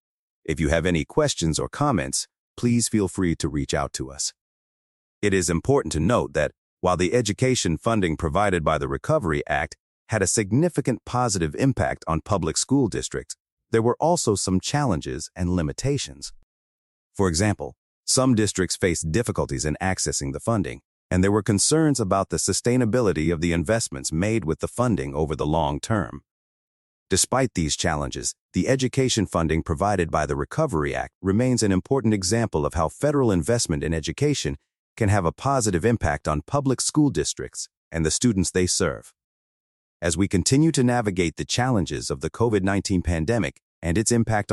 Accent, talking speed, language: American, 165 wpm, English